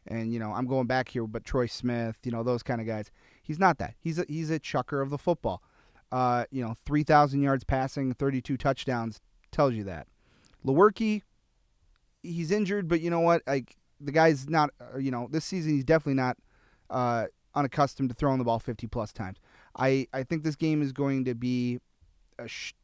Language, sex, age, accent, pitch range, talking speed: English, male, 30-49, American, 115-145 Hz, 195 wpm